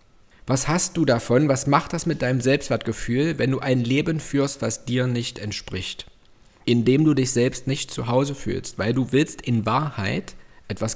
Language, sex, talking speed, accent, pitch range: German, male, 180 wpm, German, 115-150 Hz